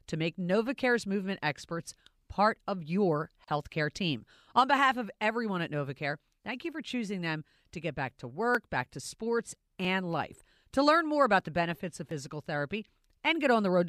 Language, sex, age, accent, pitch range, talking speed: English, female, 40-59, American, 165-255 Hz, 195 wpm